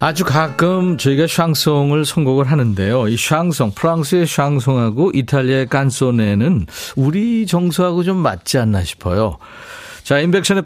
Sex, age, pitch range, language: male, 40-59, 115-160 Hz, Korean